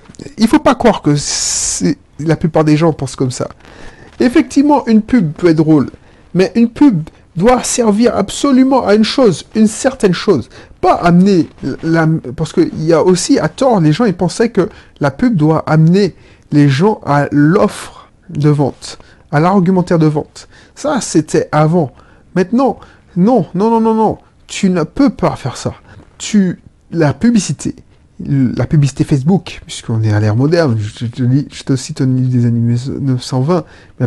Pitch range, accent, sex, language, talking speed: 135-205 Hz, French, male, French, 165 wpm